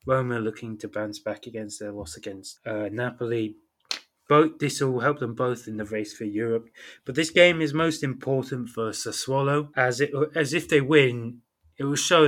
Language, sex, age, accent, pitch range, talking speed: English, male, 20-39, British, 110-130 Hz, 185 wpm